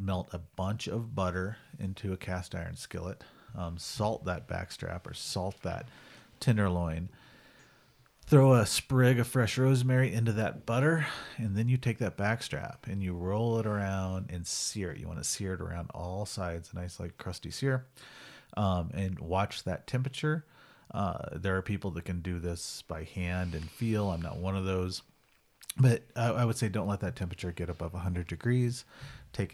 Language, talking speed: English, 185 wpm